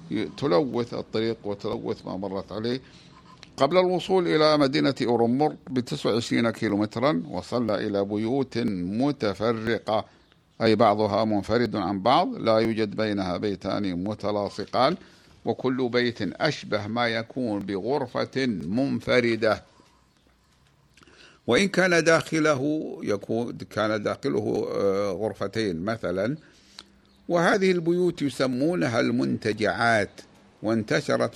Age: 60-79